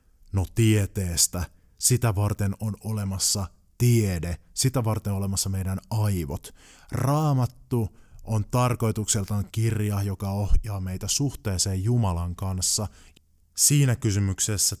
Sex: male